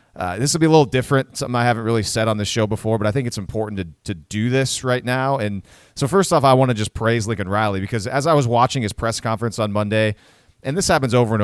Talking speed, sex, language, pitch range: 275 wpm, male, English, 105-125 Hz